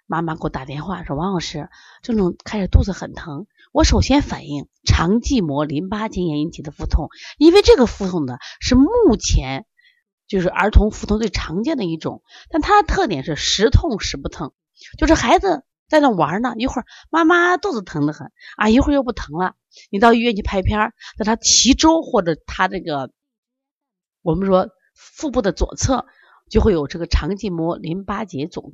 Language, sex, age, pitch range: Chinese, female, 30-49, 160-255 Hz